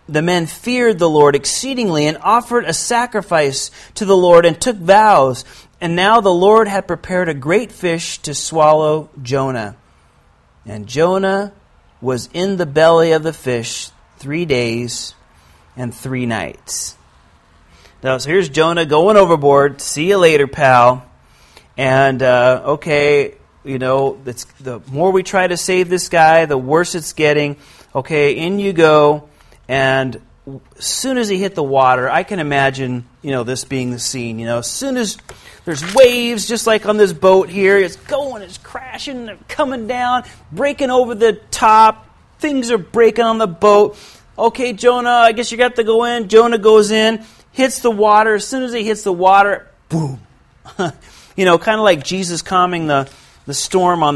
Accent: American